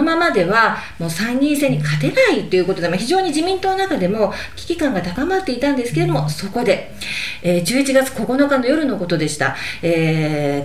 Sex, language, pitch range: female, Japanese, 170-270 Hz